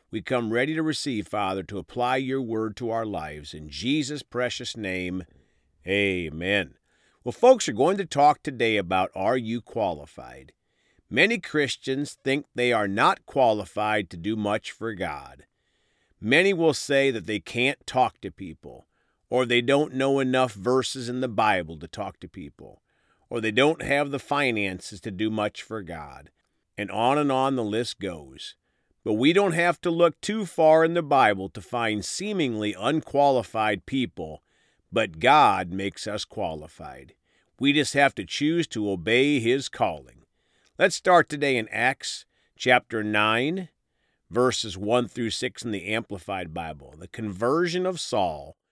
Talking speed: 160 wpm